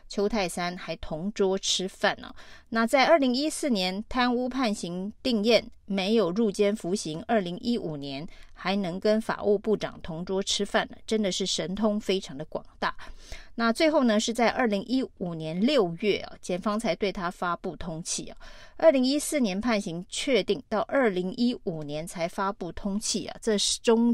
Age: 30-49